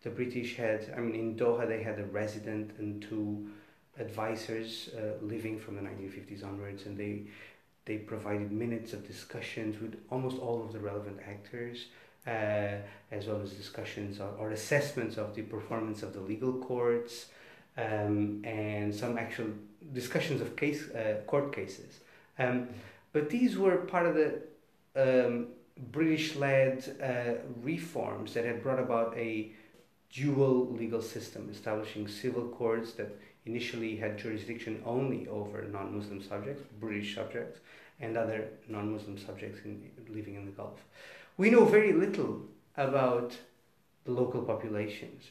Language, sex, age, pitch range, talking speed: English, male, 30-49, 105-125 Hz, 140 wpm